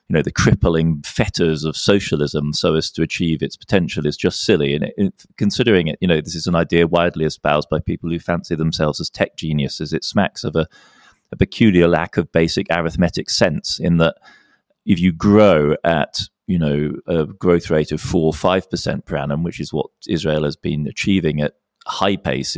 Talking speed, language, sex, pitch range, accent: 195 wpm, English, male, 75-90 Hz, British